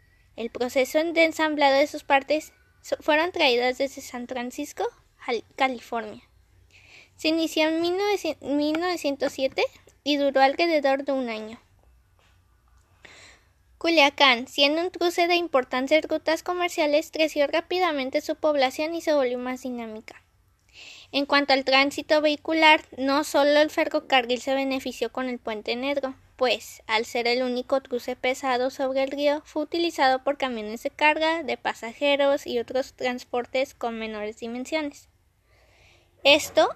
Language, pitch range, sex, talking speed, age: Spanish, 250-315 Hz, female, 130 wpm, 20-39